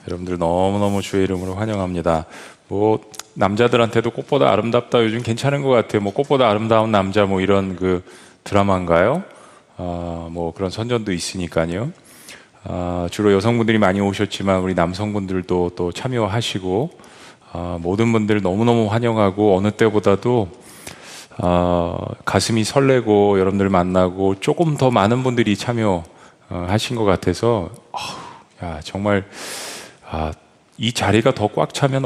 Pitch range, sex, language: 90-115 Hz, male, Korean